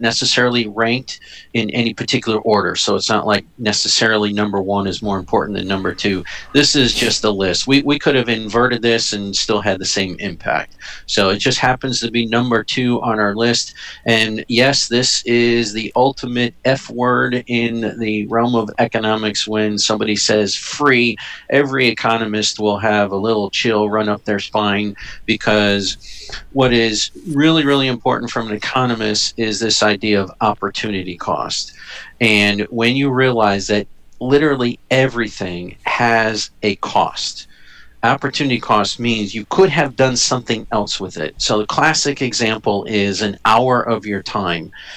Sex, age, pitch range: male, 40-59, 105-125 Hz